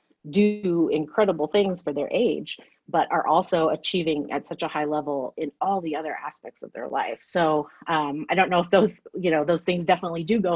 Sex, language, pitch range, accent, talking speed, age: female, English, 145-175 Hz, American, 210 wpm, 30-49